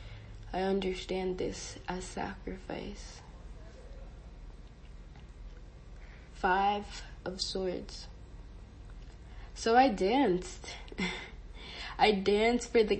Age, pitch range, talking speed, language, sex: 20-39, 175-205 Hz, 70 wpm, English, female